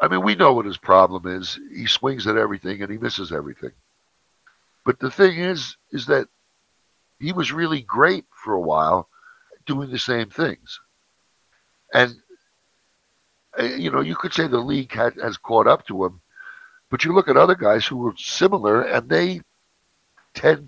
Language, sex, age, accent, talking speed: English, male, 60-79, American, 170 wpm